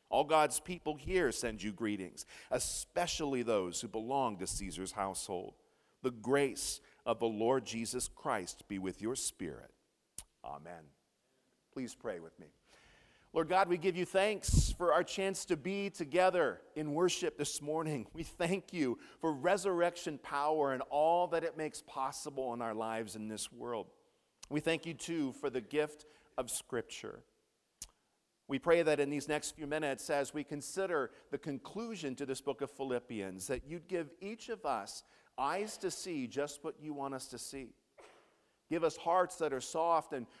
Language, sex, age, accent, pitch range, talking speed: English, male, 50-69, American, 120-165 Hz, 170 wpm